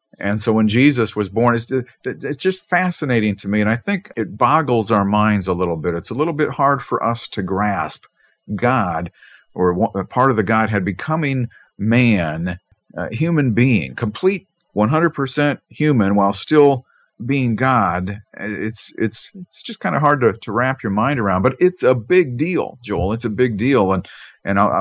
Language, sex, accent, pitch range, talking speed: English, male, American, 95-125 Hz, 185 wpm